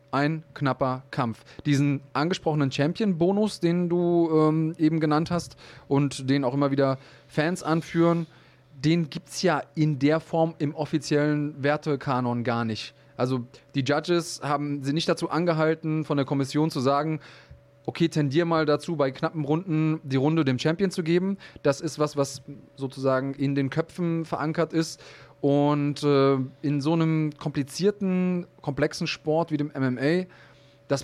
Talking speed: 155 wpm